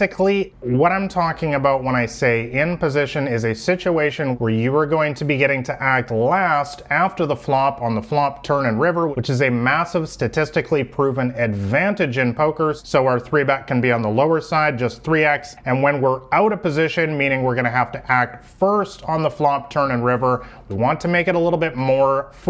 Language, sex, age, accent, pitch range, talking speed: English, male, 30-49, American, 125-155 Hz, 215 wpm